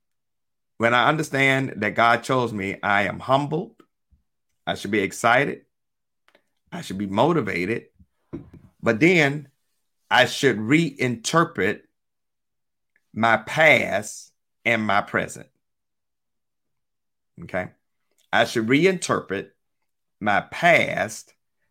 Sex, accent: male, American